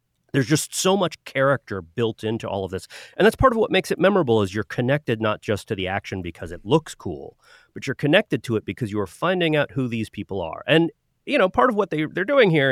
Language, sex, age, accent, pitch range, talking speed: English, male, 30-49, American, 105-150 Hz, 255 wpm